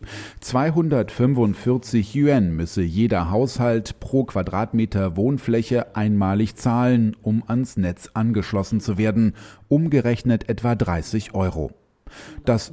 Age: 40-59